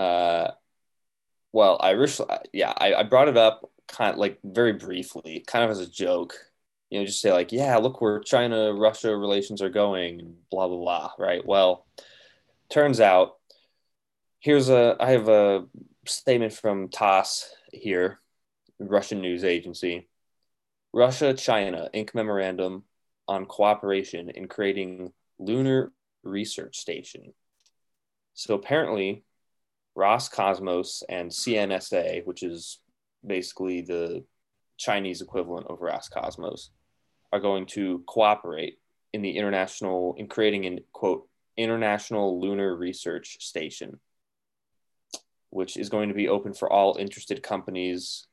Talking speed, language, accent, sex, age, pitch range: 125 wpm, English, American, male, 20-39, 90-110 Hz